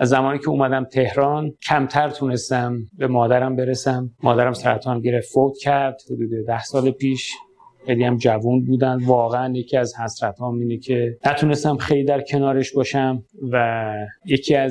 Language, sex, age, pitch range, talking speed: Persian, male, 30-49, 125-145 Hz, 145 wpm